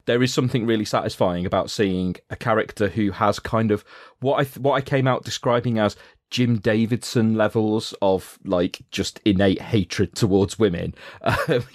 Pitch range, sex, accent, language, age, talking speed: 100-120 Hz, male, British, English, 30-49, 170 wpm